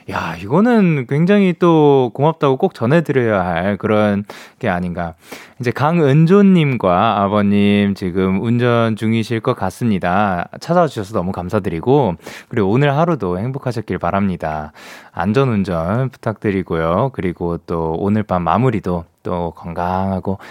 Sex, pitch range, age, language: male, 90-150 Hz, 20-39, Korean